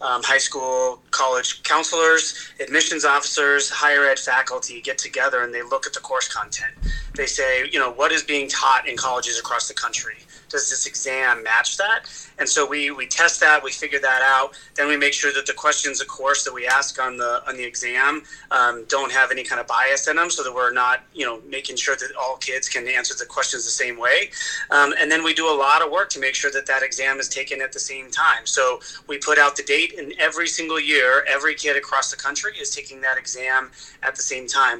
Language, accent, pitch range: English, American, 130-155 Hz